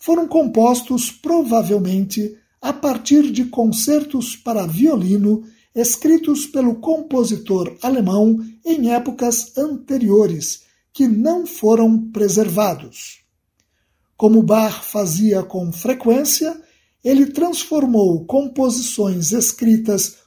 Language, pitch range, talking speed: Portuguese, 205-275 Hz, 85 wpm